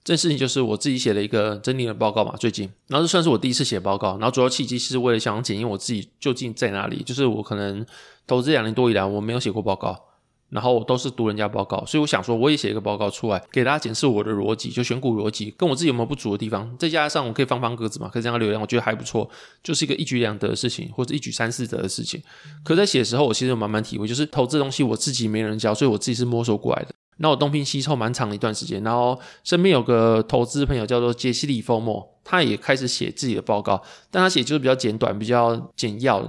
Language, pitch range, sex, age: Chinese, 110-140 Hz, male, 20-39